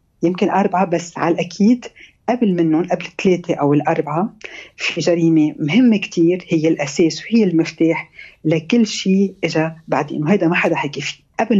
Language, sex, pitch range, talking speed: Arabic, female, 160-210 Hz, 150 wpm